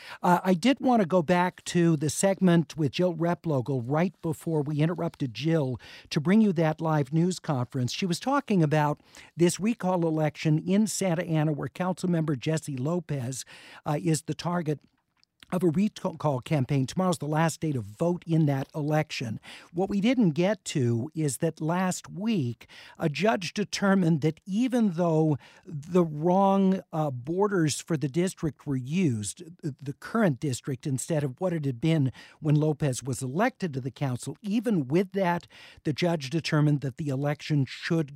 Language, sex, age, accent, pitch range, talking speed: English, male, 50-69, American, 135-180 Hz, 165 wpm